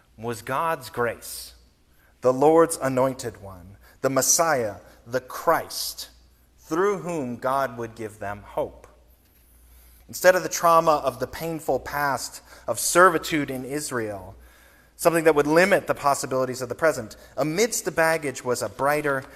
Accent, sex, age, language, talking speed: American, male, 30-49, English, 140 wpm